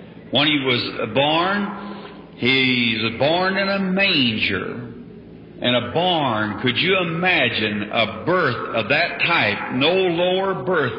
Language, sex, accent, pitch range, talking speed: English, male, American, 140-190 Hz, 130 wpm